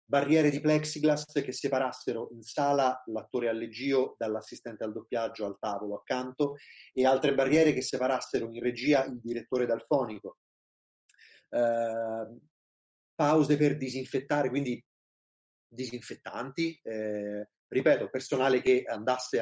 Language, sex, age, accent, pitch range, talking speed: Italian, male, 30-49, native, 115-145 Hz, 115 wpm